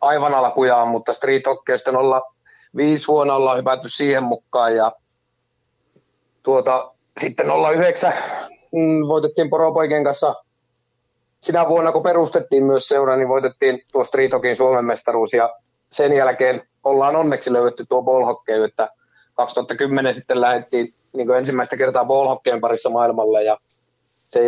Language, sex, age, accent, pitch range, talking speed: Finnish, male, 30-49, native, 120-140 Hz, 120 wpm